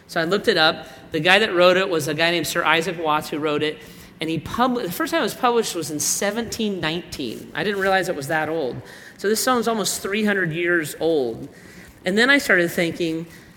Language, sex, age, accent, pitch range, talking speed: English, male, 40-59, American, 155-200 Hz, 230 wpm